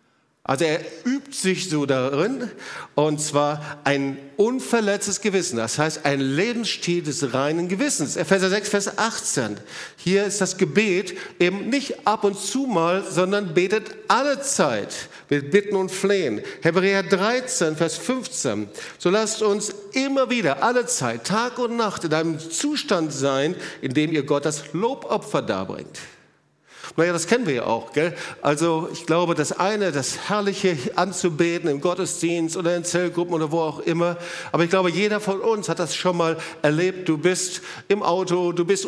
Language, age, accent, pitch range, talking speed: German, 50-69, German, 160-200 Hz, 165 wpm